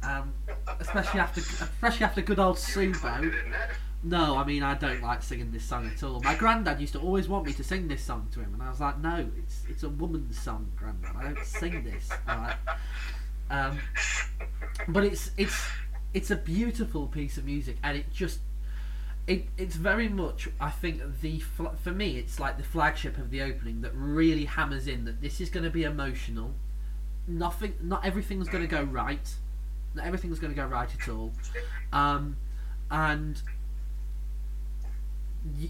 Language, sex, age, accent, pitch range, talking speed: English, male, 30-49, British, 115-165 Hz, 180 wpm